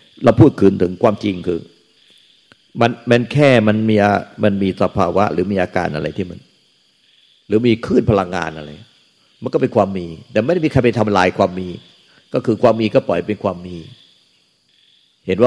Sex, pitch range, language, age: male, 95-120 Hz, Thai, 60-79